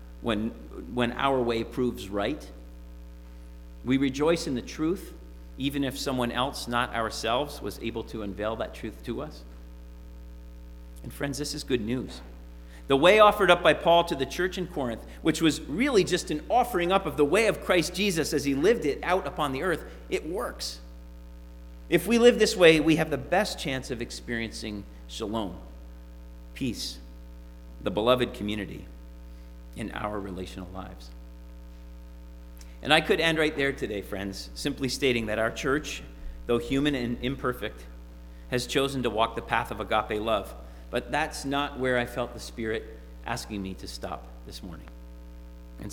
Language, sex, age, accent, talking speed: English, male, 40-59, American, 165 wpm